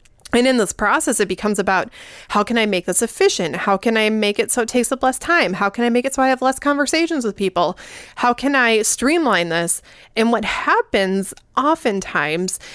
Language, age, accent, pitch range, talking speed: English, 20-39, American, 195-245 Hz, 210 wpm